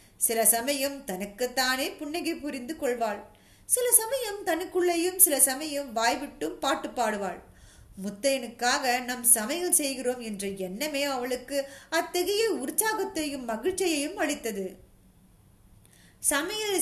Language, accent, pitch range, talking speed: Tamil, native, 230-330 Hz, 85 wpm